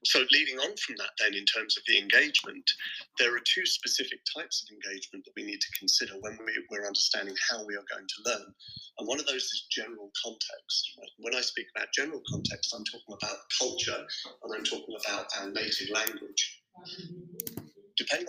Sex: male